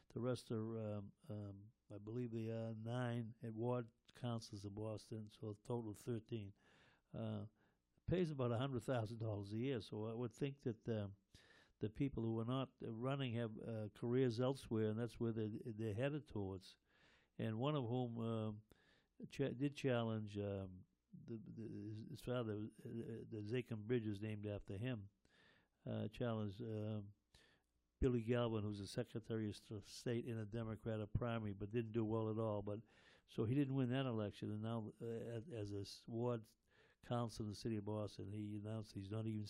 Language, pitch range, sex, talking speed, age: English, 105-125 Hz, male, 180 wpm, 60-79